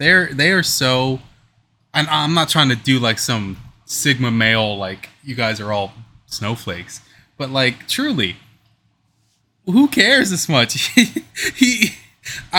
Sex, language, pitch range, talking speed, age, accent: male, English, 110-140 Hz, 140 wpm, 20-39, American